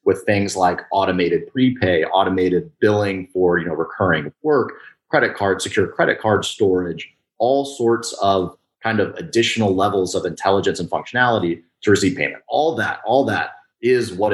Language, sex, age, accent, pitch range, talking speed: English, male, 30-49, American, 90-115 Hz, 160 wpm